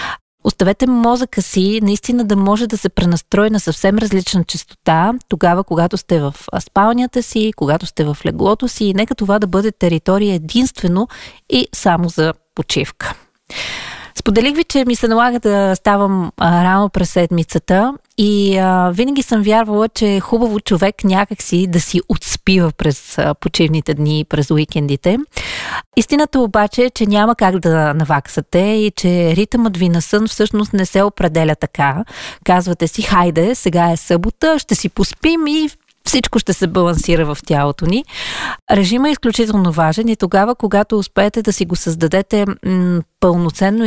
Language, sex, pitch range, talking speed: Bulgarian, female, 175-220 Hz, 160 wpm